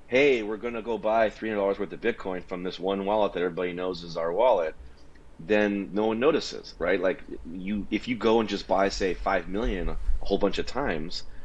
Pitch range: 80-100 Hz